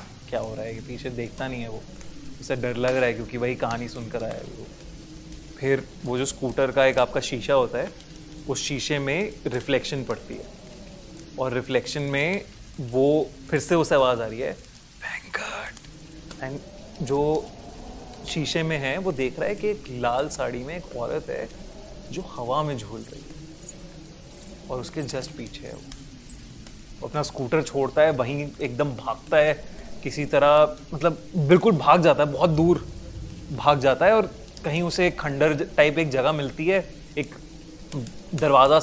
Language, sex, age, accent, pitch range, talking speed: Hindi, male, 30-49, native, 125-155 Hz, 145 wpm